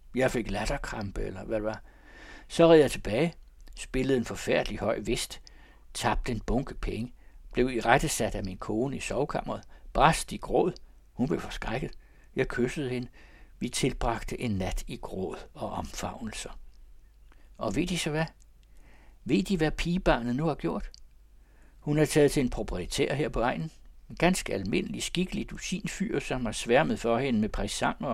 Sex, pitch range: male, 100-160 Hz